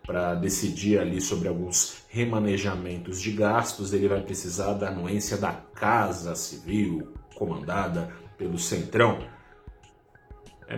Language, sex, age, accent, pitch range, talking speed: Portuguese, male, 30-49, Brazilian, 95-110 Hz, 110 wpm